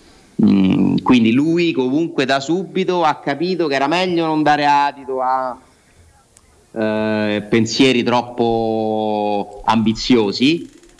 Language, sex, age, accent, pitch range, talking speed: Italian, male, 30-49, native, 110-130 Hz, 105 wpm